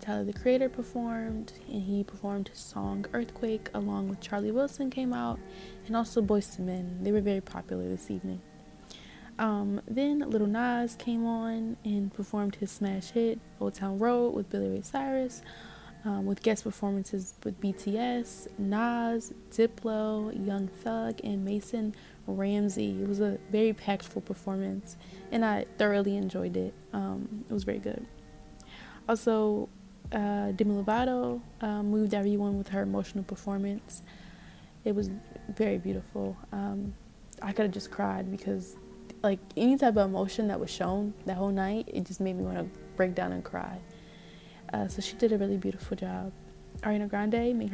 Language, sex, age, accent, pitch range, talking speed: English, female, 20-39, American, 190-225 Hz, 160 wpm